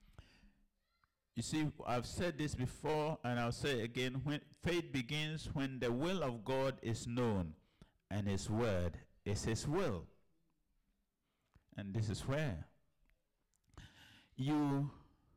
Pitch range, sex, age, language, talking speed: 105-150 Hz, male, 60-79, English, 120 wpm